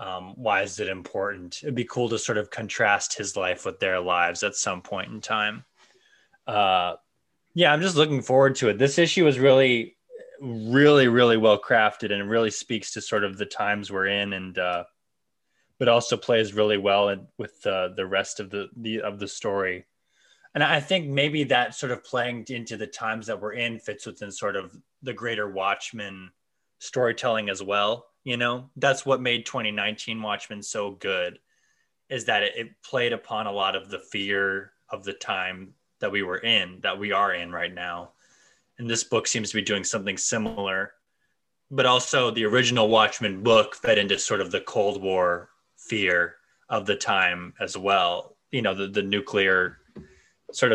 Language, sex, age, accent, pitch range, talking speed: English, male, 20-39, American, 100-135 Hz, 180 wpm